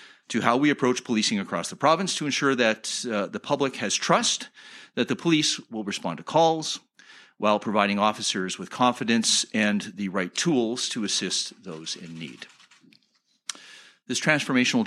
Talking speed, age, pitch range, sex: 155 wpm, 50-69, 110-155 Hz, male